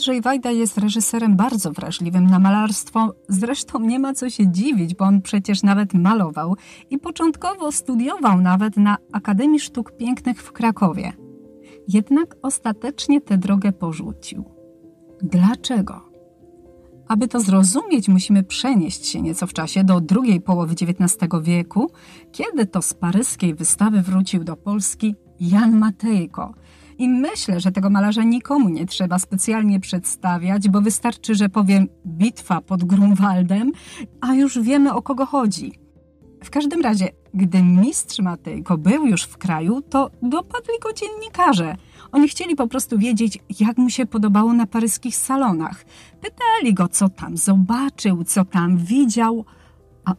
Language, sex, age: Polish, female, 30-49